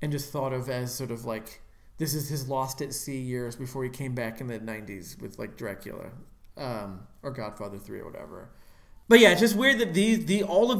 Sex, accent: male, American